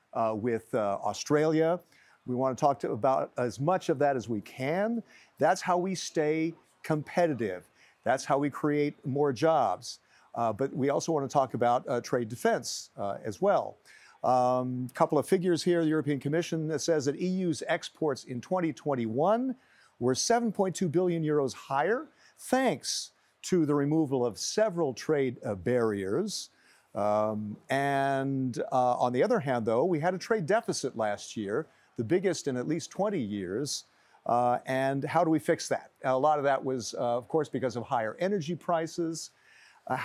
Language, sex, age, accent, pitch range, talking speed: English, male, 50-69, American, 125-165 Hz, 170 wpm